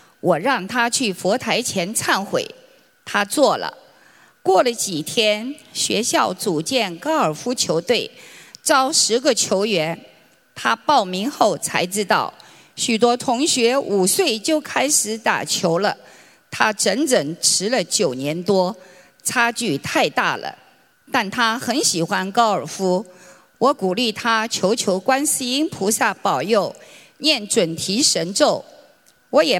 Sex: female